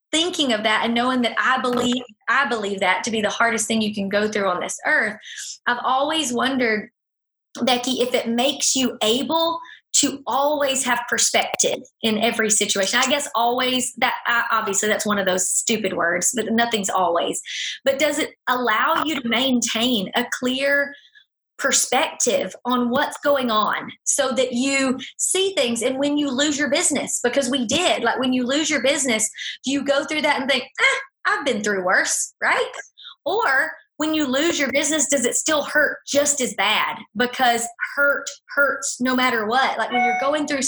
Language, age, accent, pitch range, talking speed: English, 20-39, American, 230-285 Hz, 185 wpm